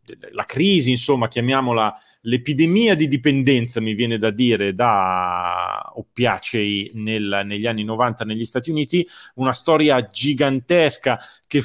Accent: native